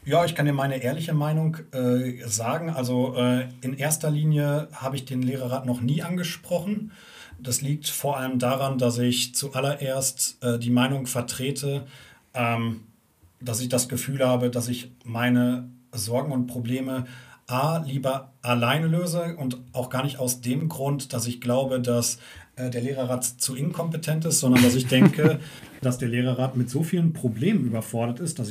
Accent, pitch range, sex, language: German, 125-145 Hz, male, German